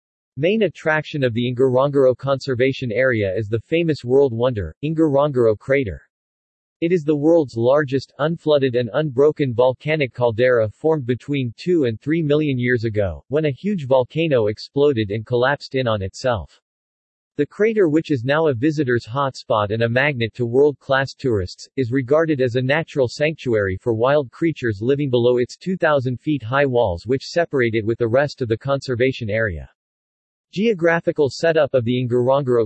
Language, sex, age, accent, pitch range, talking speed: English, male, 40-59, American, 115-145 Hz, 160 wpm